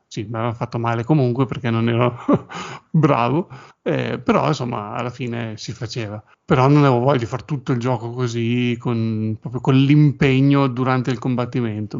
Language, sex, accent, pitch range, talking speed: Italian, male, native, 115-135 Hz, 165 wpm